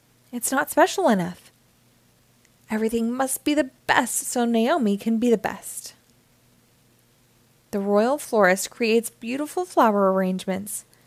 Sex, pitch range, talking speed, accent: female, 180-270 Hz, 120 wpm, American